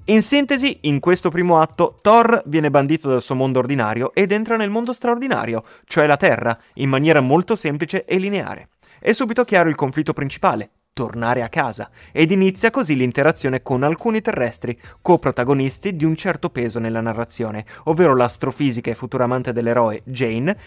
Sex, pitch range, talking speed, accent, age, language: male, 125-175 Hz, 165 wpm, native, 20-39, Italian